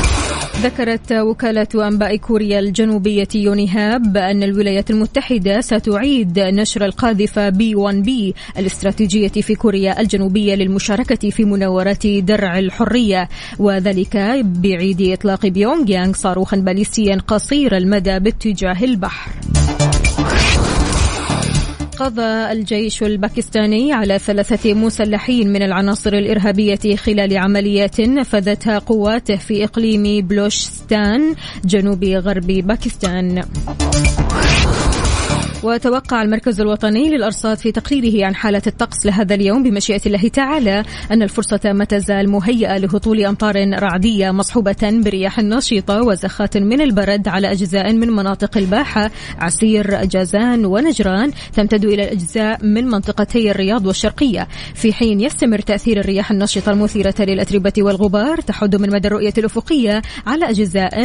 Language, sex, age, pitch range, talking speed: English, female, 20-39, 195-220 Hz, 110 wpm